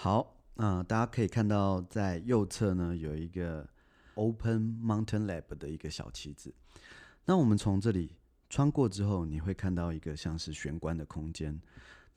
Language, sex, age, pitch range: Chinese, male, 30-49, 80-105 Hz